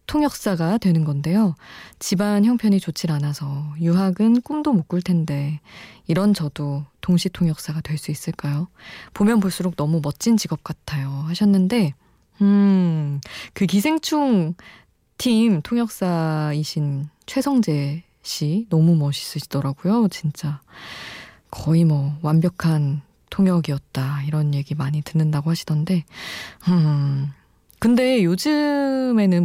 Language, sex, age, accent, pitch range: Korean, female, 20-39, native, 155-215 Hz